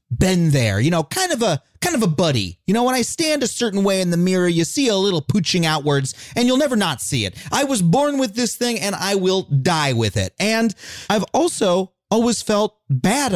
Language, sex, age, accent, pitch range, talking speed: English, male, 30-49, American, 155-235 Hz, 235 wpm